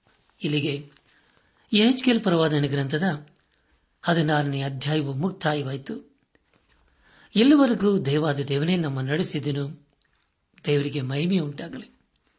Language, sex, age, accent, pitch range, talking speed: Kannada, male, 60-79, native, 145-200 Hz, 65 wpm